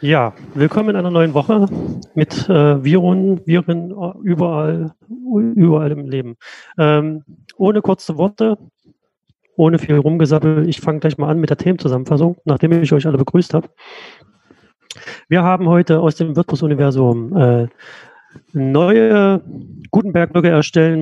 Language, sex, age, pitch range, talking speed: German, male, 40-59, 150-185 Hz, 130 wpm